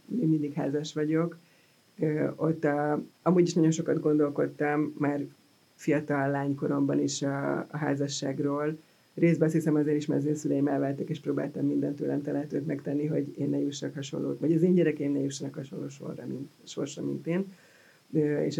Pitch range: 145-165 Hz